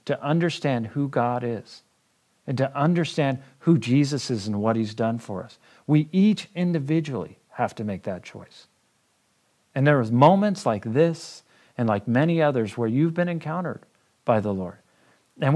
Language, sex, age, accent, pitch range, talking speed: English, male, 50-69, American, 110-145 Hz, 165 wpm